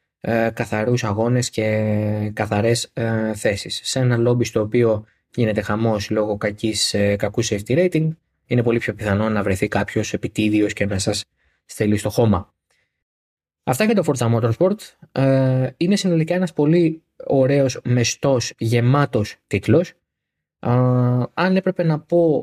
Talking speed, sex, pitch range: 140 wpm, male, 105-135 Hz